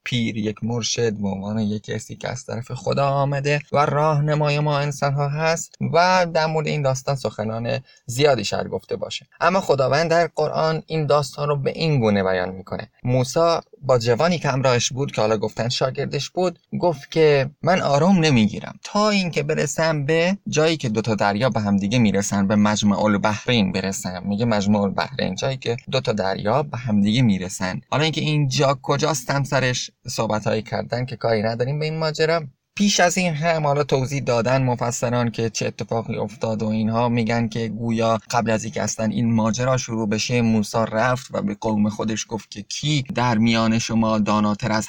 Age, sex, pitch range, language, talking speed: 20-39, male, 110-145 Hz, Persian, 180 wpm